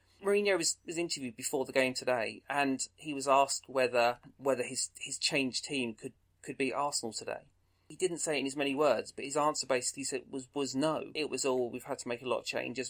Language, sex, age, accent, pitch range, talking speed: English, male, 30-49, British, 110-135 Hz, 235 wpm